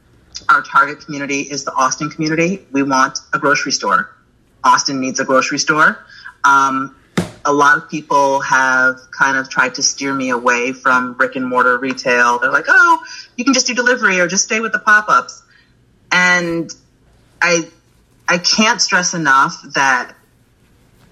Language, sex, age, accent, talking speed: English, female, 30-49, American, 160 wpm